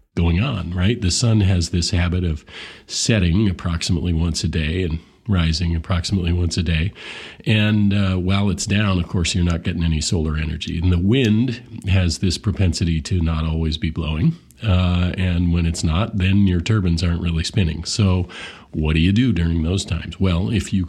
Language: English